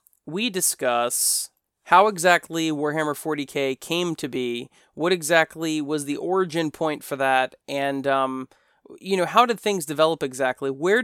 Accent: American